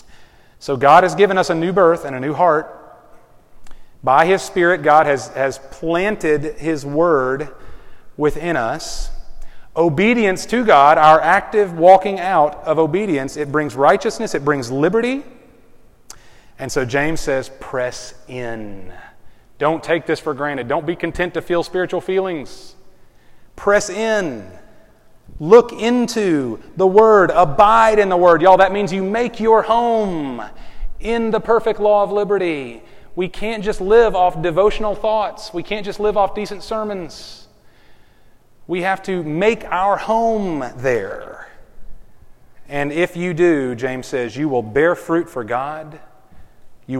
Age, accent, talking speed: 30-49, American, 145 wpm